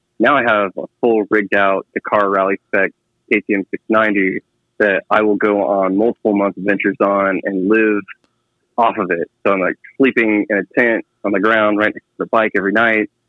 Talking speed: 205 wpm